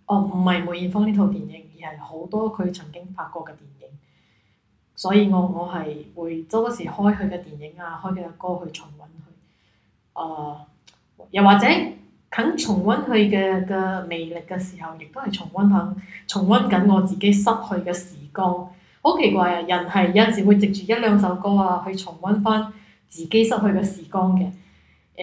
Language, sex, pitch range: Chinese, female, 175-205 Hz